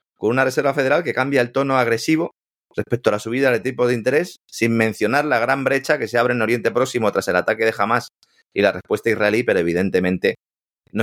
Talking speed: 220 wpm